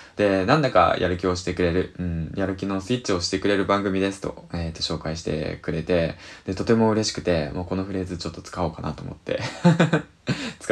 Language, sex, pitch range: Japanese, male, 90-110 Hz